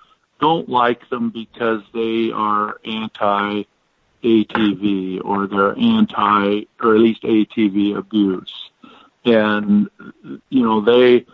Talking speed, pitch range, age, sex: 100 wpm, 105-125 Hz, 50-69, male